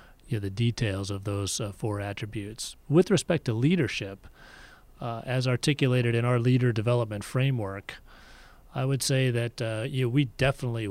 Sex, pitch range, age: male, 100-125 Hz, 40-59